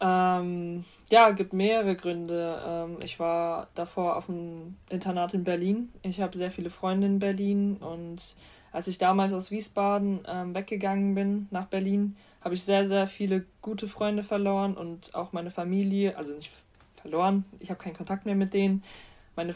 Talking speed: 170 wpm